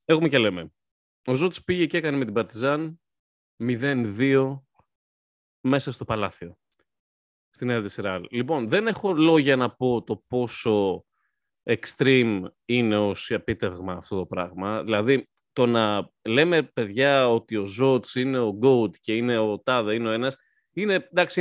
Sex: male